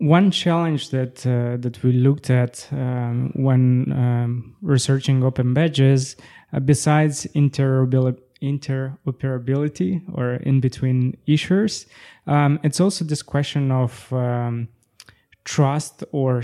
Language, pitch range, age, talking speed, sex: English, 125-145 Hz, 20-39, 105 wpm, male